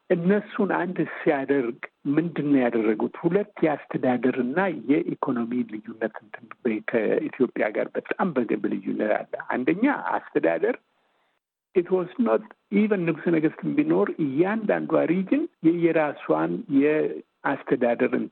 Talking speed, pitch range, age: 90 wpm, 125-190 Hz, 60-79